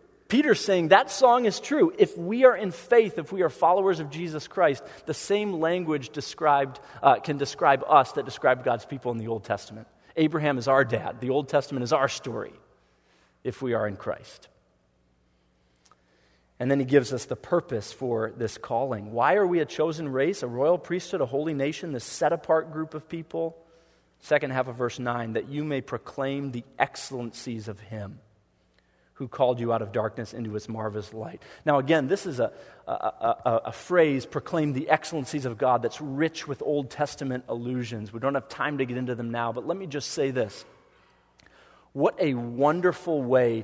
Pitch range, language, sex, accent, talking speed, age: 115-155 Hz, English, male, American, 190 wpm, 40-59